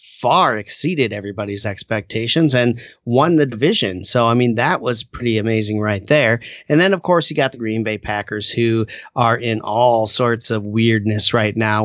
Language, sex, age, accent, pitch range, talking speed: English, male, 30-49, American, 110-140 Hz, 180 wpm